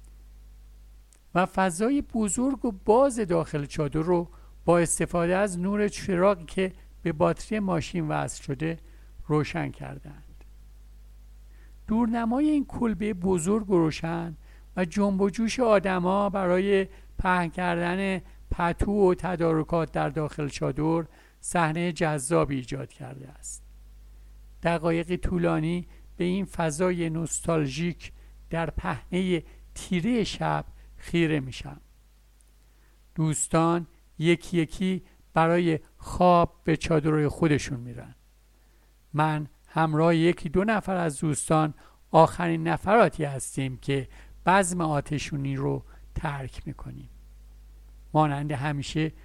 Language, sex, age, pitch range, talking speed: Persian, male, 50-69, 145-180 Hz, 105 wpm